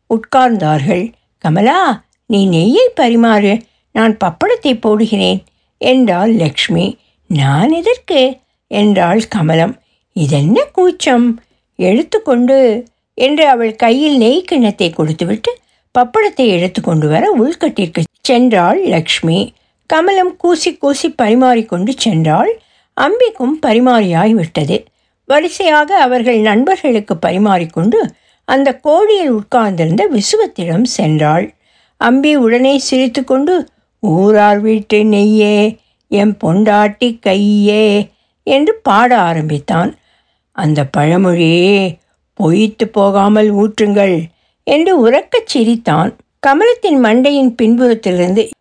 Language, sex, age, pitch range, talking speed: Tamil, female, 60-79, 190-265 Hz, 85 wpm